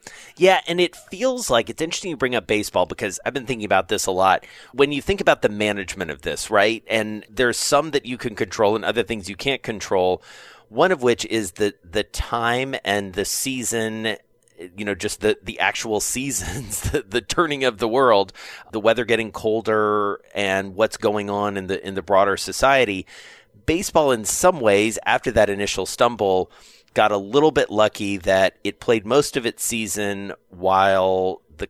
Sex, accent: male, American